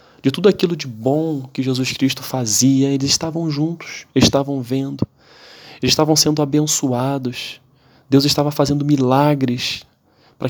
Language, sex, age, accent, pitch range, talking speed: Portuguese, male, 20-39, Brazilian, 115-140 Hz, 130 wpm